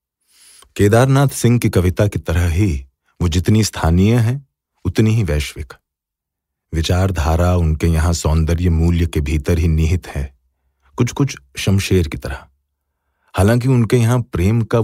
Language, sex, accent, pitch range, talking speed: Hindi, male, native, 75-105 Hz, 135 wpm